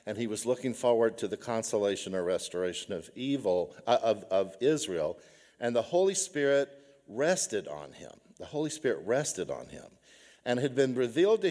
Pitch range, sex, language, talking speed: 100-155 Hz, male, English, 170 wpm